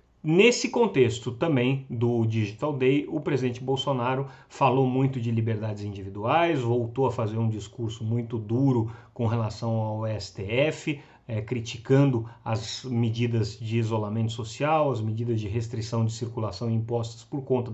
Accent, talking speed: Brazilian, 135 wpm